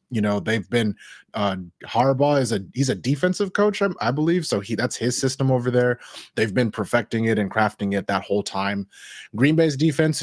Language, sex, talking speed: English, male, 205 wpm